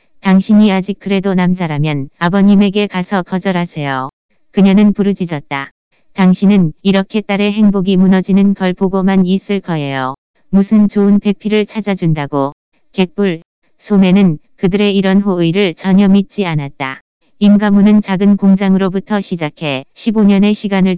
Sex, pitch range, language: female, 175-200 Hz, Korean